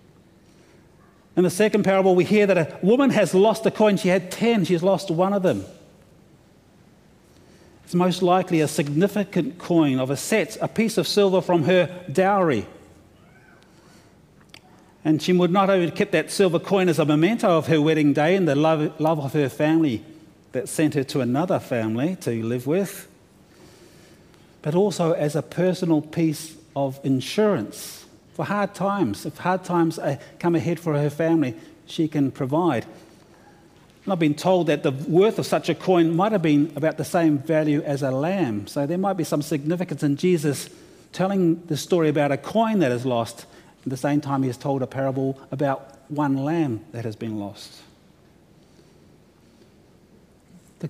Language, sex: English, male